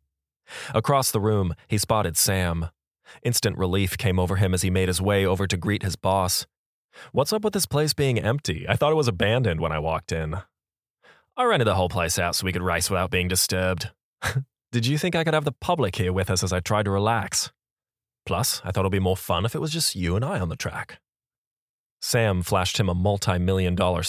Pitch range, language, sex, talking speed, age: 90-110 Hz, English, male, 220 wpm, 20-39